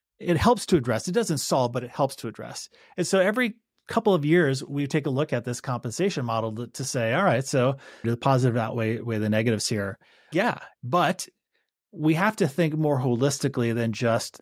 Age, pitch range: 30-49, 120-155 Hz